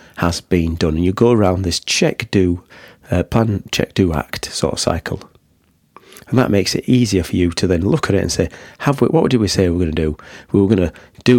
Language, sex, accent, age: English, male, British, 40-59